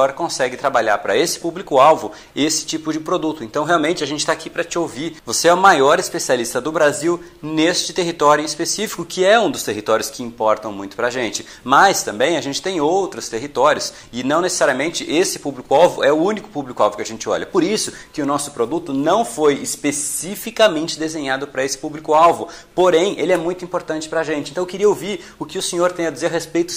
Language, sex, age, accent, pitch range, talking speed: Portuguese, male, 30-49, Brazilian, 135-170 Hz, 210 wpm